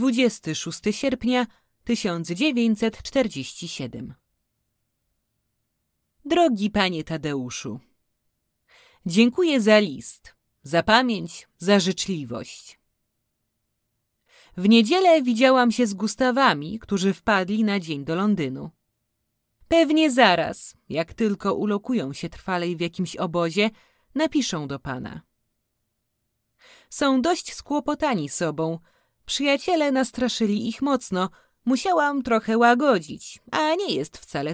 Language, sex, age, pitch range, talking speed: Polish, female, 30-49, 160-260 Hz, 90 wpm